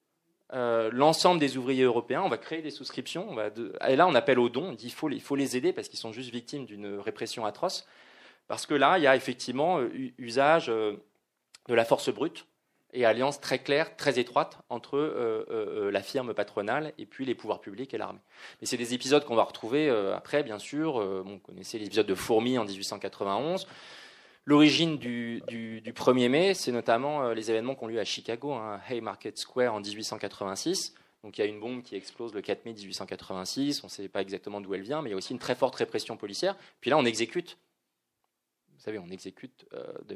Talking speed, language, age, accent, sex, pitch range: 220 wpm, French, 20-39, French, male, 110-155 Hz